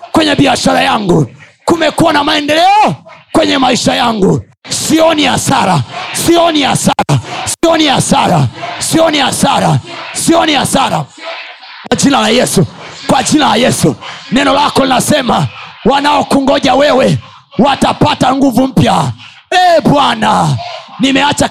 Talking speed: 105 wpm